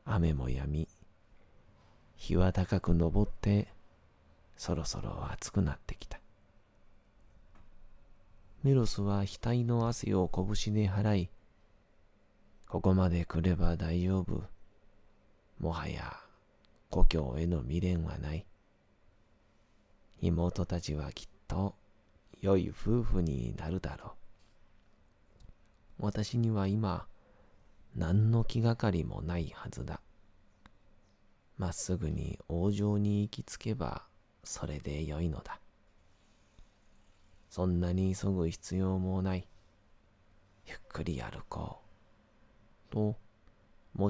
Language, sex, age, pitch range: Japanese, male, 40-59, 90-105 Hz